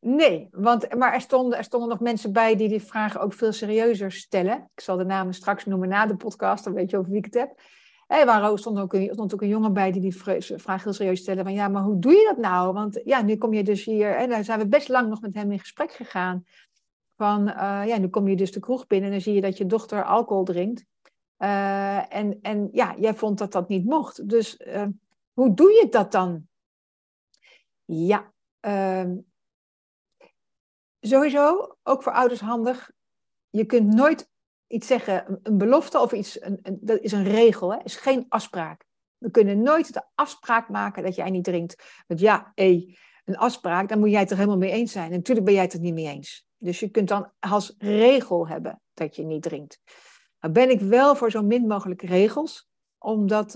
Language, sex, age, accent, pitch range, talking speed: Dutch, female, 60-79, Dutch, 190-230 Hz, 215 wpm